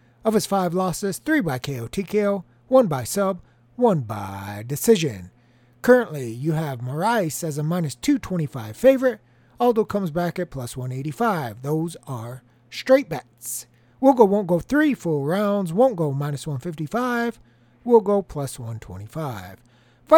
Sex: male